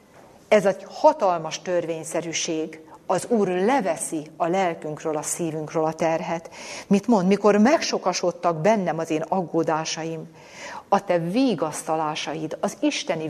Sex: female